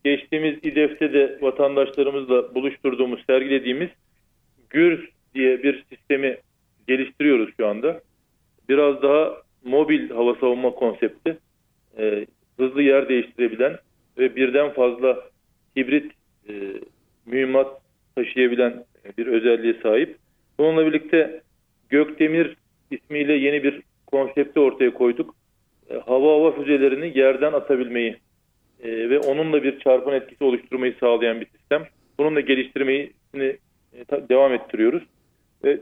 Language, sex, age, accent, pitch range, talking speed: Turkish, male, 40-59, native, 130-160 Hz, 105 wpm